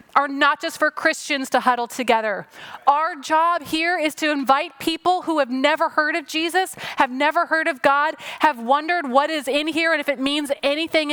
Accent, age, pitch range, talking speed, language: American, 30-49, 260-325 Hz, 200 wpm, English